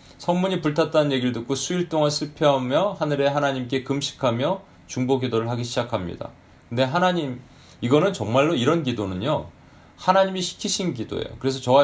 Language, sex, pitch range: Korean, male, 115-150 Hz